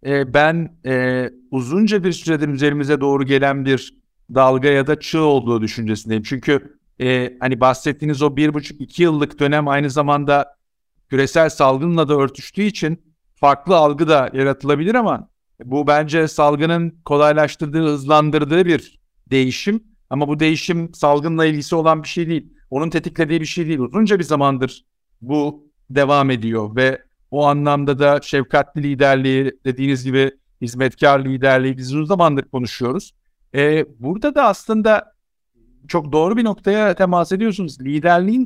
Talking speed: 135 wpm